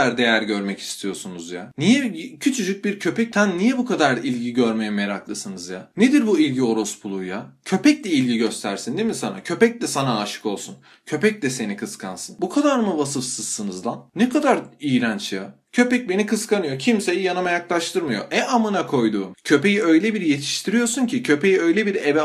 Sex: male